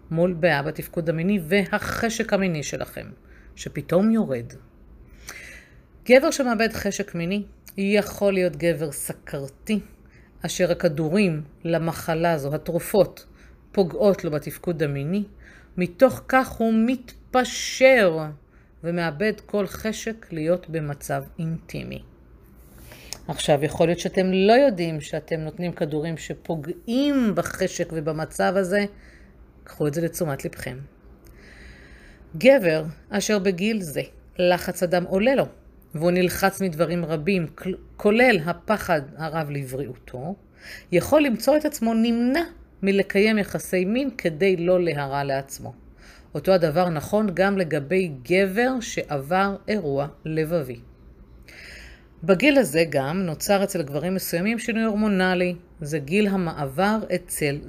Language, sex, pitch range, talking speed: Hebrew, female, 150-200 Hz, 110 wpm